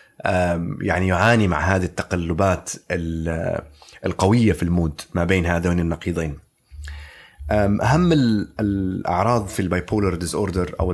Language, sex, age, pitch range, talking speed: Arabic, male, 30-49, 85-105 Hz, 105 wpm